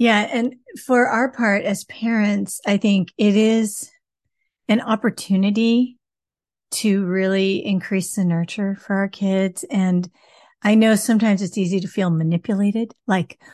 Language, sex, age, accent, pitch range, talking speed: English, female, 40-59, American, 185-230 Hz, 135 wpm